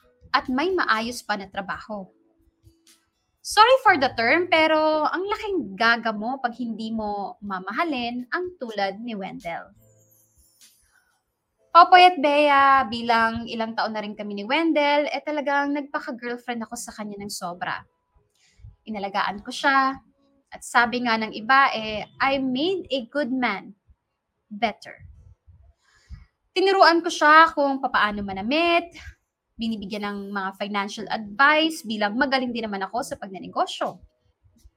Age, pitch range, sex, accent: 20-39, 210-285 Hz, female, native